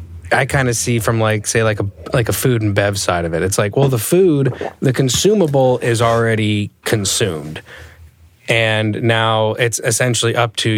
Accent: American